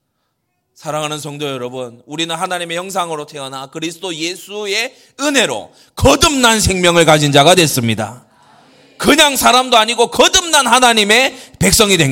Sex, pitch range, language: male, 120-185 Hz, Korean